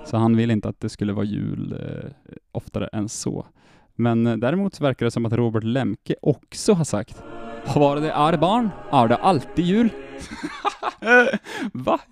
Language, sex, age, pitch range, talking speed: Swedish, male, 20-39, 110-160 Hz, 185 wpm